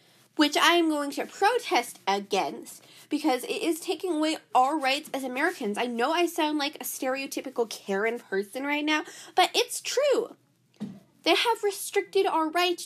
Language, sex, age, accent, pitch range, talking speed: English, female, 10-29, American, 245-345 Hz, 165 wpm